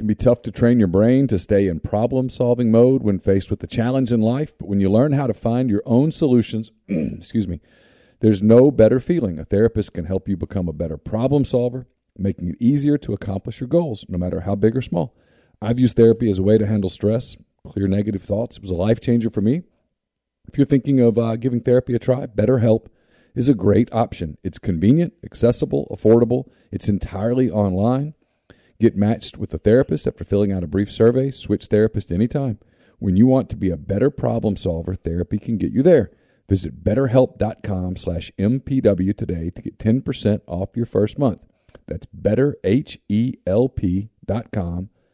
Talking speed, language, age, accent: 190 wpm, English, 40-59, American